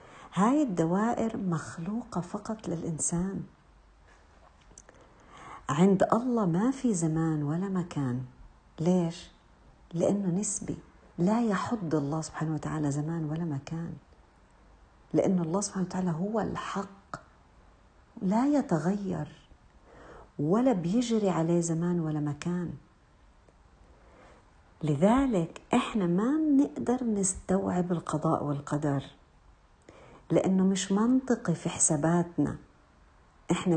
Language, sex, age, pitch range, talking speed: Arabic, female, 50-69, 145-180 Hz, 90 wpm